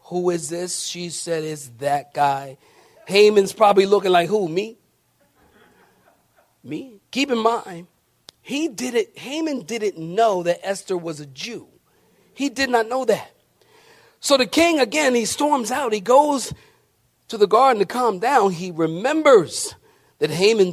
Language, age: English, 40-59